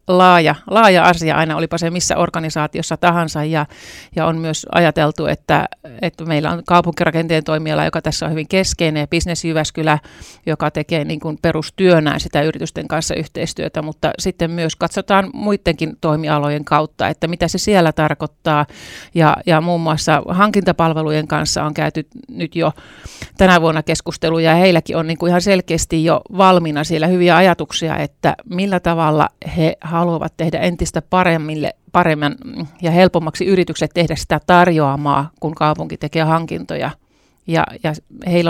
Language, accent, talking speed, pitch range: Finnish, native, 145 wpm, 155-175 Hz